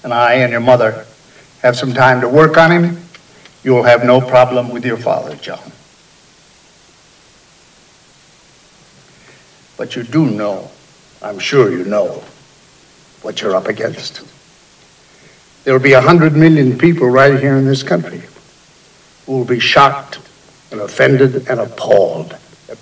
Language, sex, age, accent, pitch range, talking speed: English, male, 60-79, American, 125-155 Hz, 135 wpm